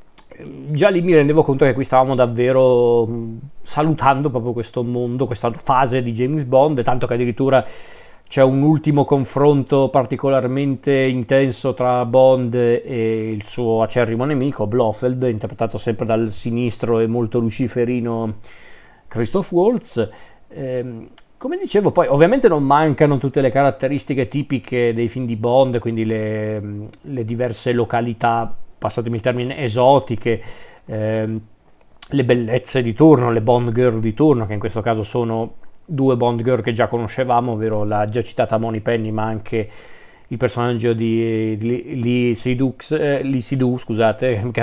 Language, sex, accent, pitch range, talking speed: Italian, male, native, 115-135 Hz, 140 wpm